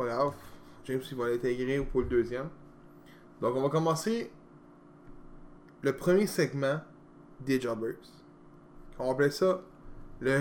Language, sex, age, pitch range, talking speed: French, male, 20-39, 125-175 Hz, 140 wpm